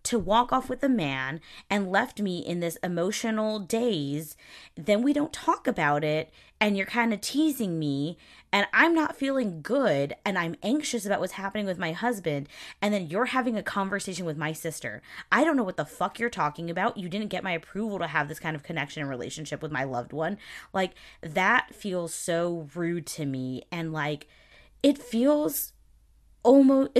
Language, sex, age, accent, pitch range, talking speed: English, female, 20-39, American, 155-230 Hz, 190 wpm